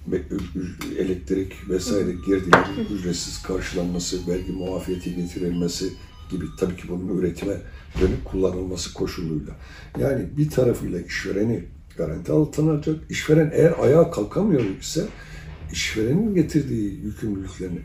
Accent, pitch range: native, 85-130 Hz